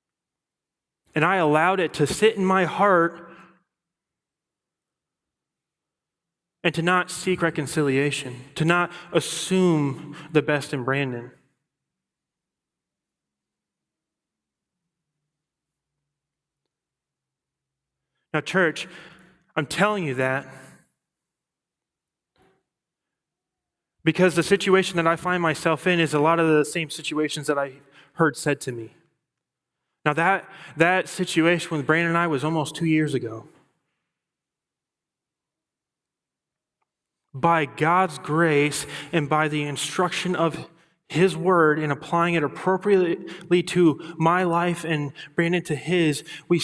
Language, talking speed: English, 105 wpm